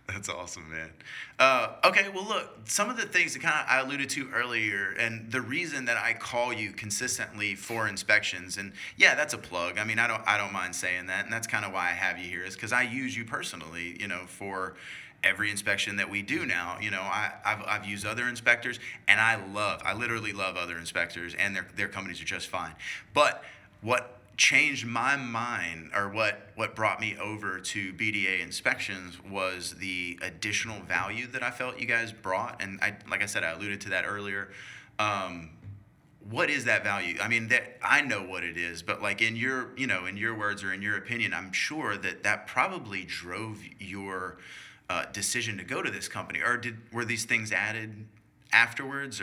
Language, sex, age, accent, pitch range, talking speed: English, male, 30-49, American, 95-115 Hz, 205 wpm